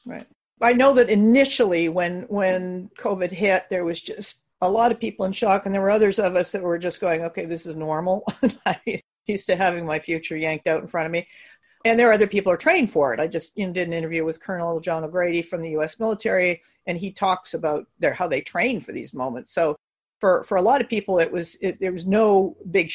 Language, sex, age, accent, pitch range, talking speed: English, female, 50-69, American, 165-195 Hz, 240 wpm